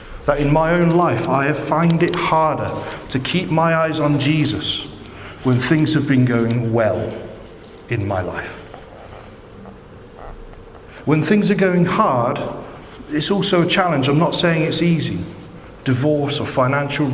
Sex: male